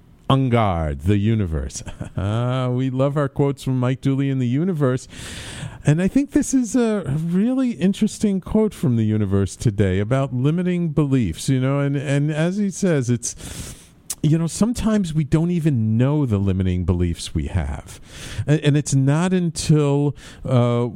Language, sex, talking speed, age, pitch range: English, male, 160 wpm, 50-69, 110-160 Hz